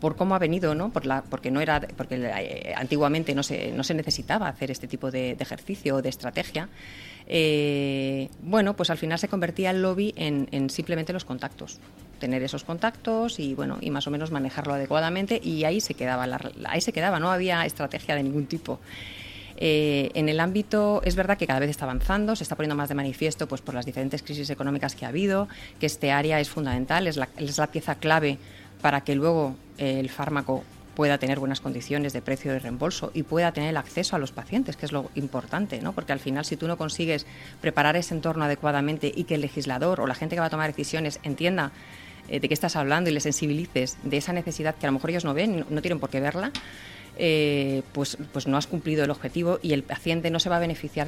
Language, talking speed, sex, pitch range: Spanish, 225 wpm, female, 135-175 Hz